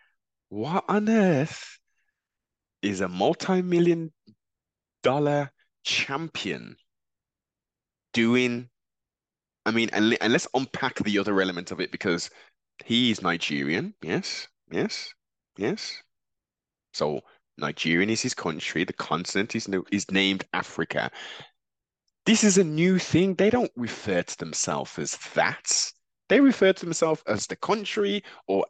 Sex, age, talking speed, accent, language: male, 20-39, 120 wpm, British, English